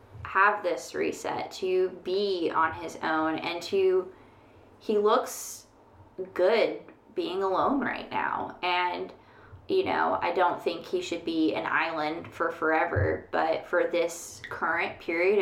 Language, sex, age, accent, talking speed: English, female, 20-39, American, 135 wpm